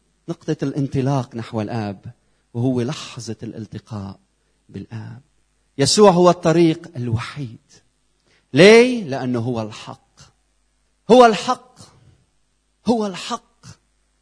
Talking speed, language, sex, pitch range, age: 85 wpm, Arabic, male, 130-200 Hz, 40-59